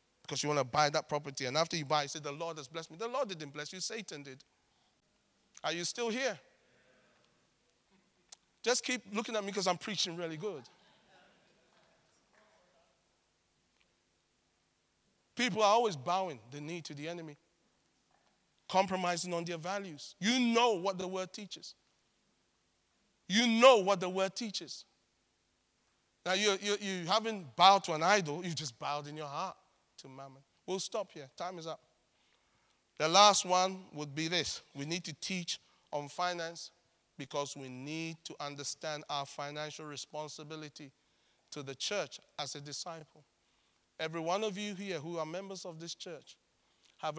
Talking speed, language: 155 wpm, English